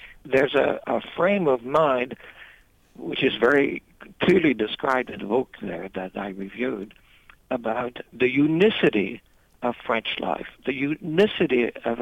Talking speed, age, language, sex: 135 wpm, 60-79, English, male